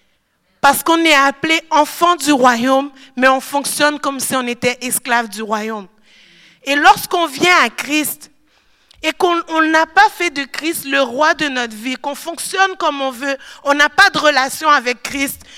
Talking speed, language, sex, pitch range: 175 wpm, French, female, 250-310 Hz